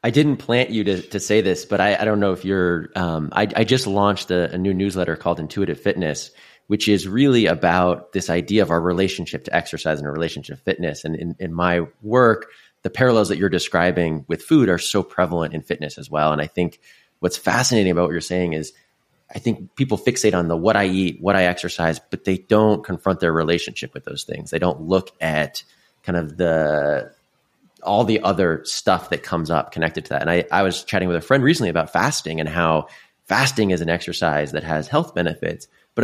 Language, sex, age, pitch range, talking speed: English, male, 30-49, 80-100 Hz, 220 wpm